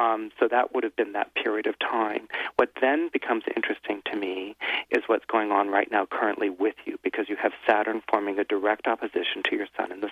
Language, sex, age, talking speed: English, male, 40-59, 225 wpm